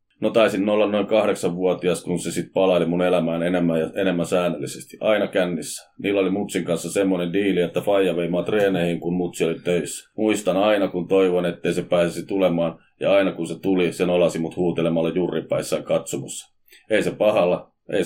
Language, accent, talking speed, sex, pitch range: Finnish, native, 185 wpm, male, 85-100 Hz